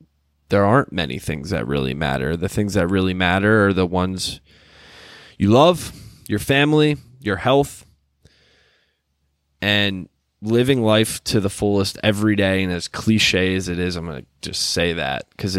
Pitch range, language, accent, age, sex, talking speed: 90-105 Hz, English, American, 20-39, male, 160 wpm